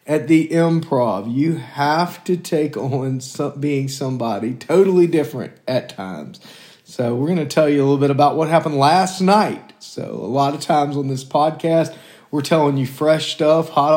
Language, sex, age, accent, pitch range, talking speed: English, male, 40-59, American, 140-170 Hz, 180 wpm